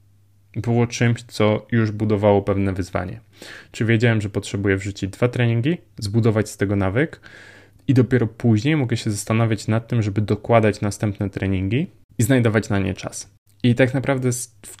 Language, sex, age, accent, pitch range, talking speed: Polish, male, 20-39, native, 100-115 Hz, 160 wpm